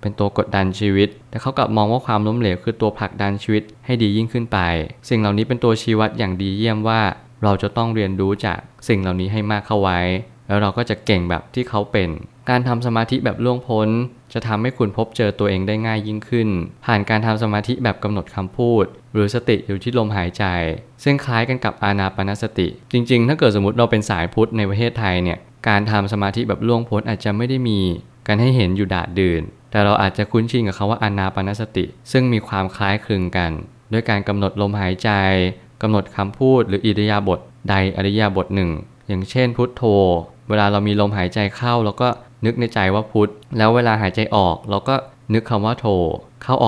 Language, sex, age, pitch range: Thai, male, 20-39, 100-120 Hz